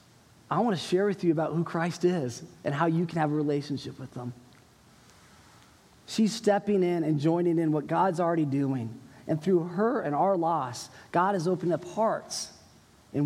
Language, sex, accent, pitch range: English, male, American, 160-205 Hz